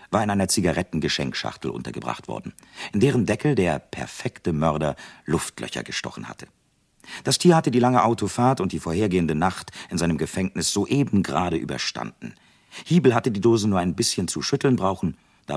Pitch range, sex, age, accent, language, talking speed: 85-125 Hz, male, 50-69, German, German, 160 wpm